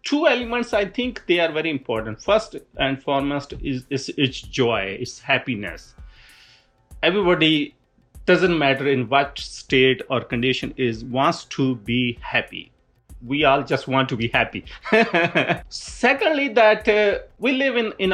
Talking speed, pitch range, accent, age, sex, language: 140 wpm, 130-180 Hz, Indian, 30-49, male, English